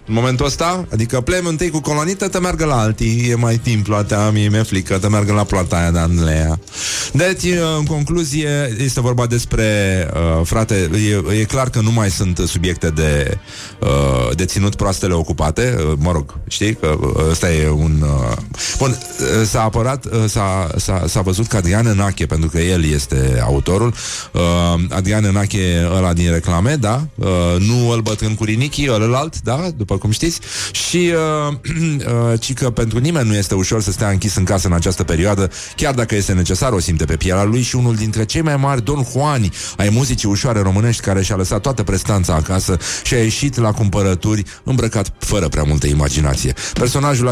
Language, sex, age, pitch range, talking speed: Italian, male, 30-49, 90-120 Hz, 185 wpm